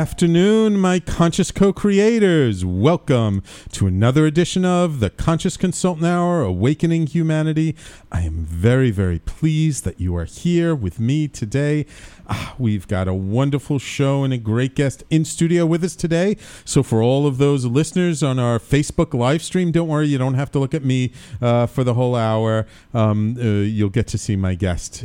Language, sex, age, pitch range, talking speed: English, male, 40-59, 100-155 Hz, 180 wpm